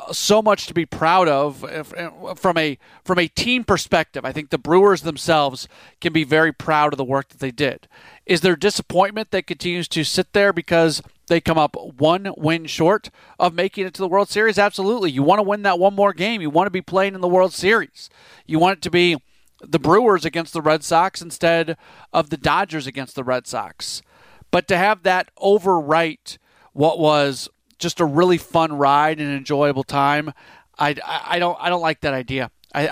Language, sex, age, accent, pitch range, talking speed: English, male, 40-59, American, 140-180 Hz, 200 wpm